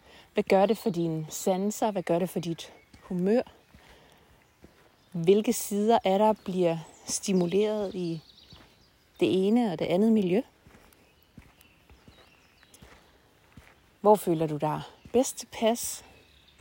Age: 30-49